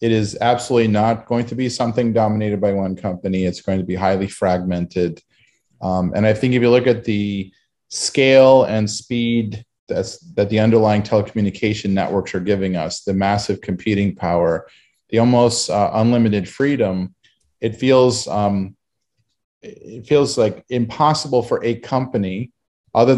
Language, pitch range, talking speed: English, 95-120 Hz, 155 wpm